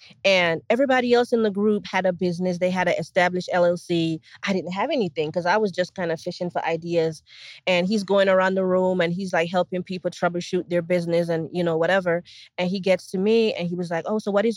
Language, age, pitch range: English, 20-39, 165-205 Hz